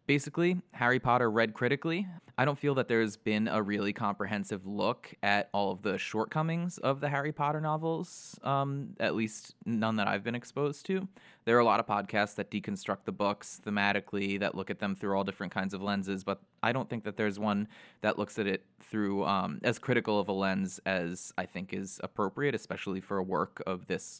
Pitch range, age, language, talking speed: 105-140 Hz, 20-39, English, 210 wpm